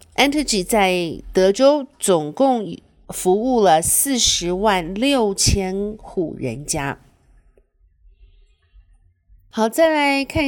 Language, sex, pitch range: Chinese, female, 175-245 Hz